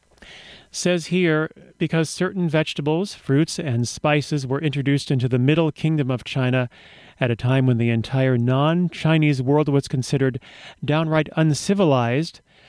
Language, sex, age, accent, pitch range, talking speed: English, male, 40-59, American, 130-160 Hz, 130 wpm